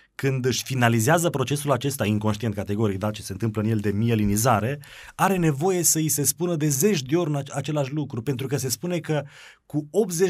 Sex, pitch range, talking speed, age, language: male, 115-150 Hz, 200 wpm, 30-49, Romanian